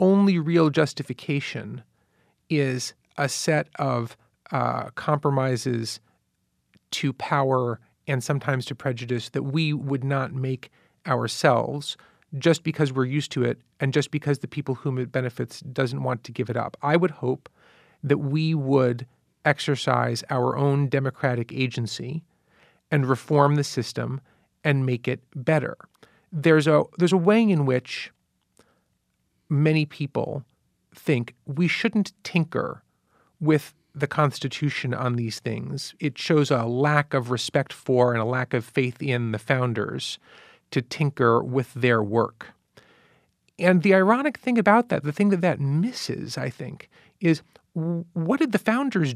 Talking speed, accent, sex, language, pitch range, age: 140 wpm, American, male, English, 130-160 Hz, 40-59